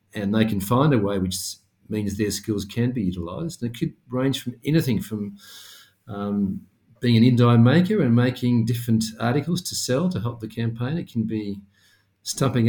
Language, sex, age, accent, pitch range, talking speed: English, male, 50-69, Australian, 105-130 Hz, 185 wpm